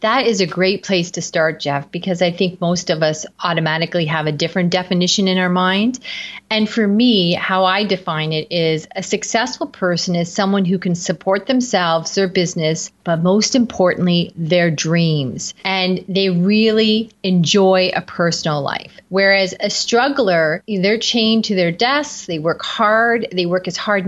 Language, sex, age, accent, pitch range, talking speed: English, female, 30-49, American, 170-210 Hz, 170 wpm